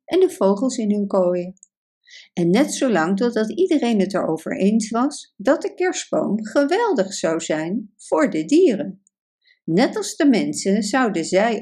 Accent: Dutch